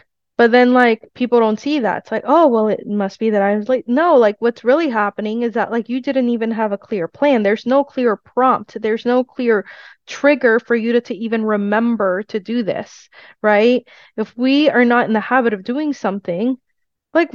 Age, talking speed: 20-39, 215 wpm